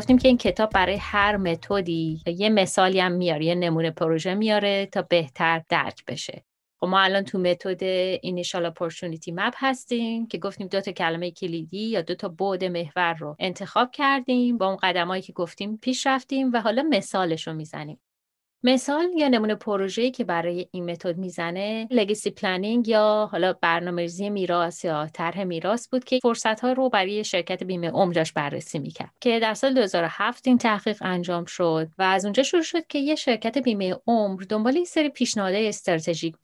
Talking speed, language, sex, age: 175 wpm, Persian, female, 30-49